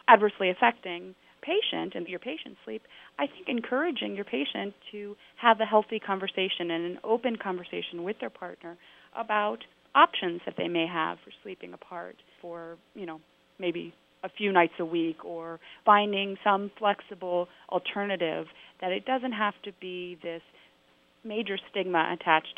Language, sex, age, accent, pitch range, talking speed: English, female, 30-49, American, 170-215 Hz, 150 wpm